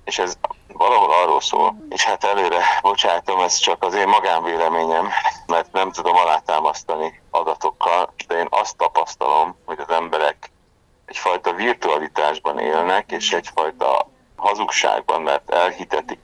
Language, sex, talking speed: Hungarian, male, 125 wpm